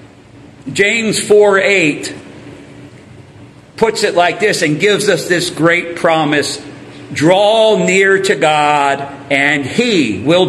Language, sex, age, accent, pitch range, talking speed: English, male, 50-69, American, 155-210 Hz, 110 wpm